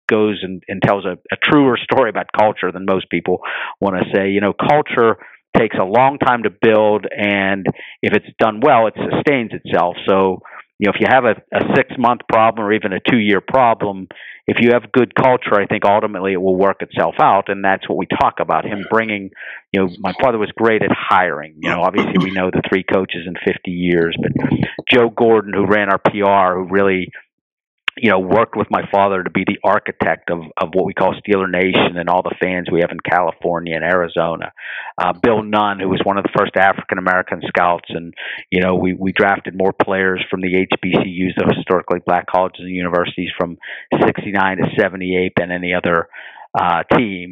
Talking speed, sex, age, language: 205 wpm, male, 50-69, English